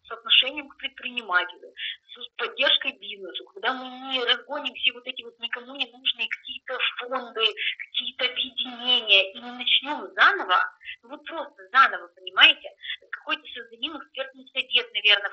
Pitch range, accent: 230-330 Hz, native